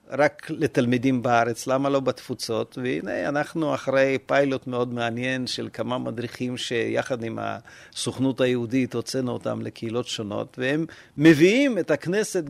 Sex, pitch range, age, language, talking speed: male, 125-180 Hz, 50-69, Hebrew, 130 wpm